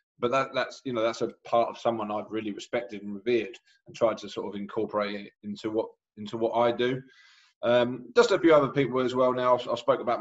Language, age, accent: English, 20-39, British